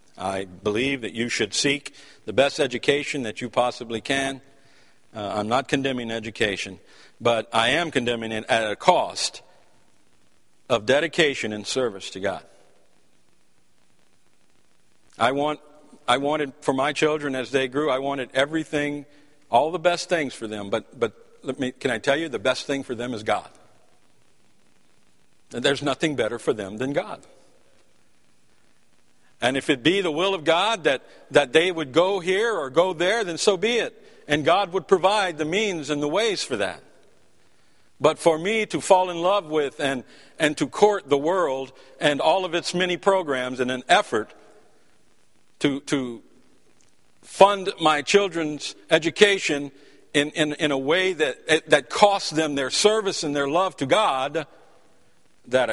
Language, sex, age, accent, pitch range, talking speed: English, male, 50-69, American, 125-170 Hz, 165 wpm